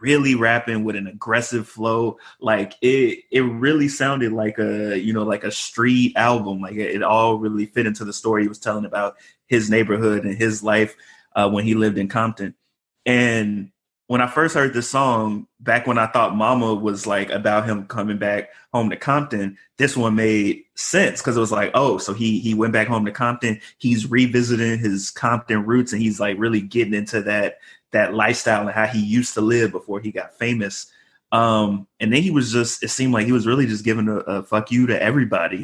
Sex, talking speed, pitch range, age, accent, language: male, 210 wpm, 105-120 Hz, 20-39, American, English